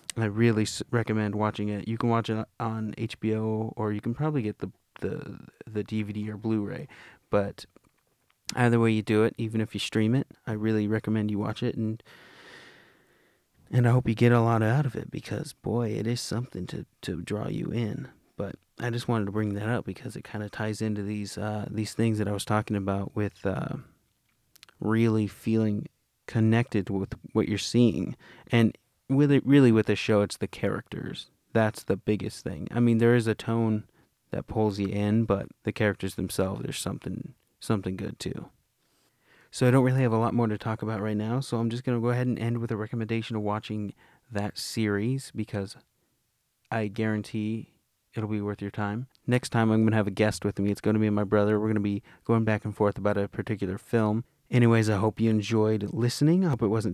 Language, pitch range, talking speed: English, 105-120 Hz, 210 wpm